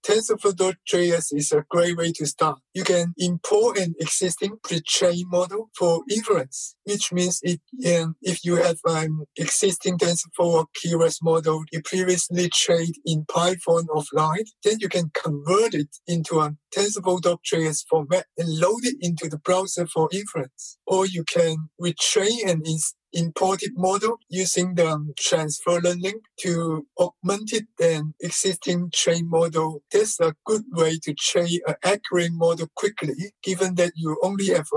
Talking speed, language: 150 wpm, English